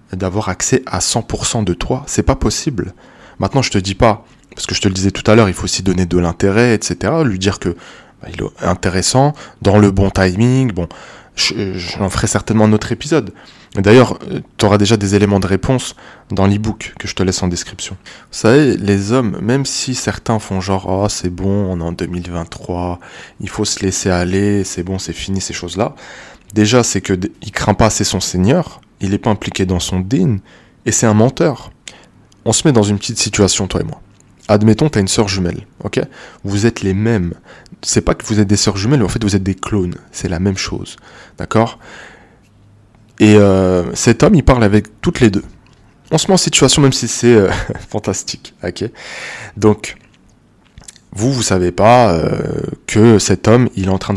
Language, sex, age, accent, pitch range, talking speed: French, male, 20-39, French, 95-115 Hz, 215 wpm